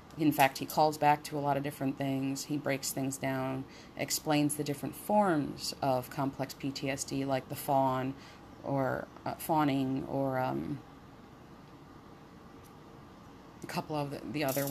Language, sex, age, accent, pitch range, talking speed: English, female, 30-49, American, 140-155 Hz, 145 wpm